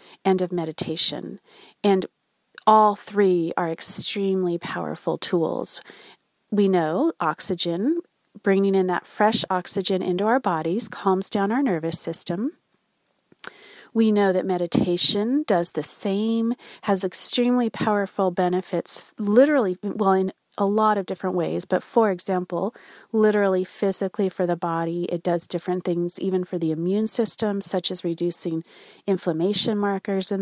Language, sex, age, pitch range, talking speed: English, female, 40-59, 180-215 Hz, 135 wpm